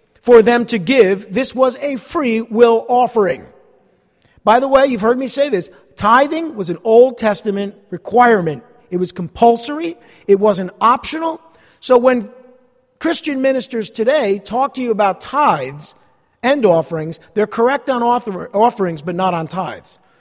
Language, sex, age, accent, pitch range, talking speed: English, male, 50-69, American, 200-270 Hz, 150 wpm